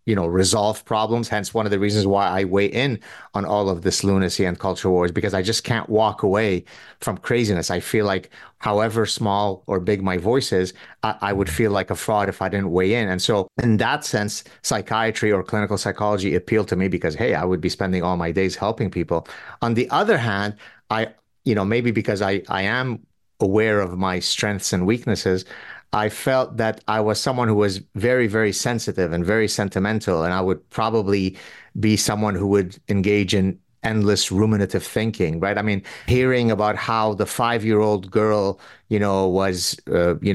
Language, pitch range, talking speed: English, 95-110 Hz, 200 wpm